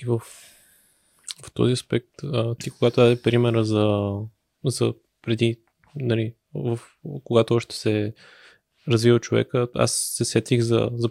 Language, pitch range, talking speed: Bulgarian, 110-120 Hz, 130 wpm